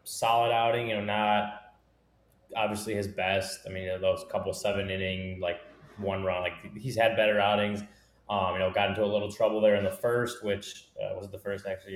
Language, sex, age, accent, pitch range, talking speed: English, male, 20-39, American, 95-110 Hz, 210 wpm